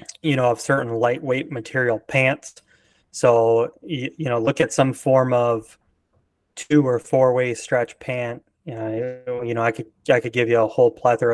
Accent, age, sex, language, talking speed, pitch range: American, 20-39, male, English, 180 wpm, 115-130 Hz